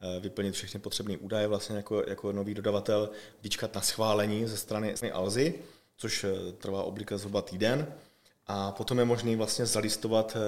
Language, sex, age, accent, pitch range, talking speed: Czech, male, 30-49, native, 100-110 Hz, 150 wpm